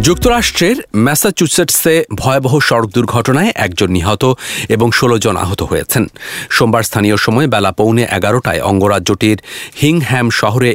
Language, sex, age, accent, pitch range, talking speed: English, male, 40-59, Indian, 100-125 Hz, 115 wpm